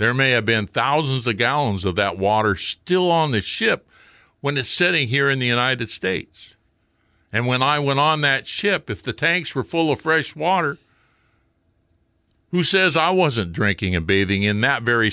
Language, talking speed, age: English, 185 wpm, 60-79